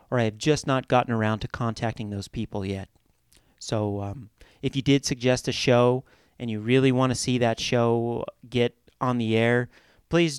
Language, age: English, 40-59